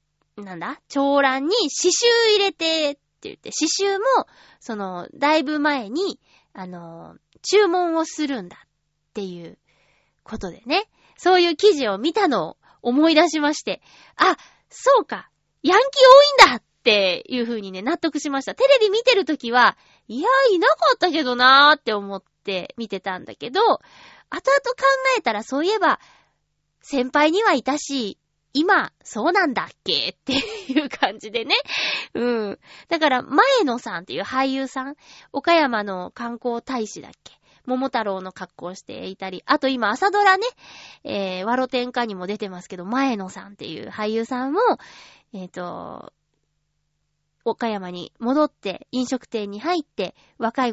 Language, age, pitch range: Japanese, 20-39, 210-325 Hz